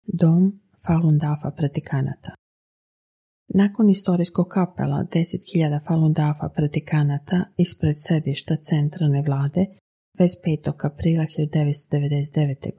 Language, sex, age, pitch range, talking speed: Croatian, female, 30-49, 150-175 Hz, 85 wpm